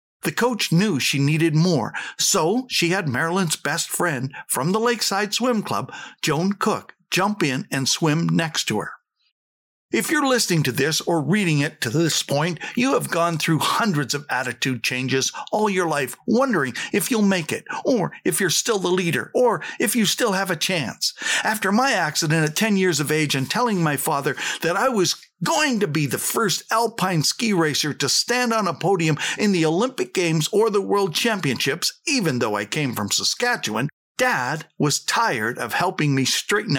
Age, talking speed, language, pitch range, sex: 60-79, 190 wpm, English, 150-215 Hz, male